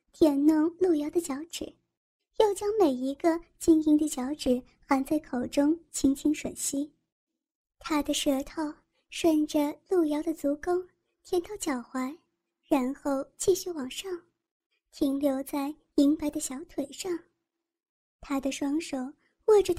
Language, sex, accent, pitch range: Chinese, male, native, 285-350 Hz